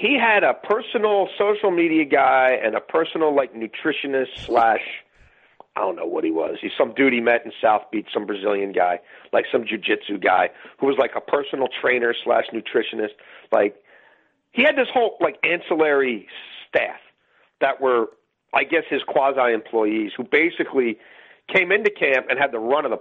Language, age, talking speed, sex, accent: English, 40-59, 175 wpm, male, American